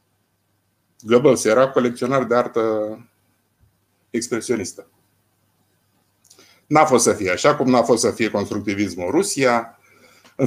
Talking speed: 115 wpm